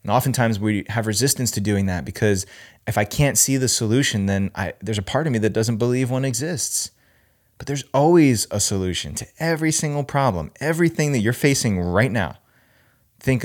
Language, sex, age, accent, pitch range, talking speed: English, male, 20-39, American, 95-130 Hz, 190 wpm